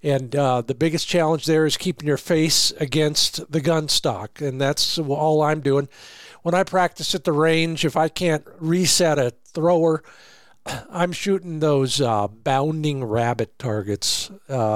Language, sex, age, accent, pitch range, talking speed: English, male, 50-69, American, 130-175 Hz, 160 wpm